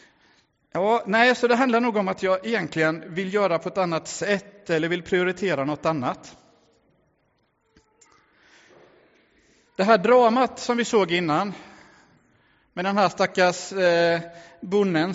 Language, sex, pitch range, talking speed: English, male, 165-225 Hz, 125 wpm